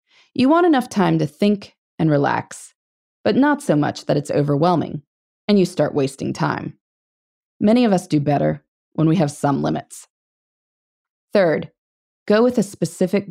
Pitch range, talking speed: 155-225 Hz, 160 wpm